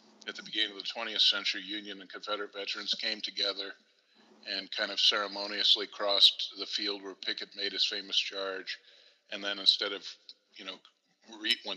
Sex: male